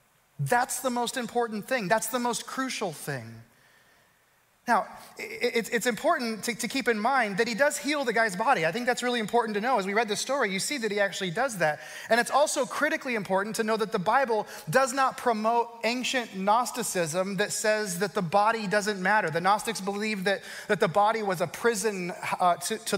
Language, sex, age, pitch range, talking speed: English, male, 30-49, 195-245 Hz, 195 wpm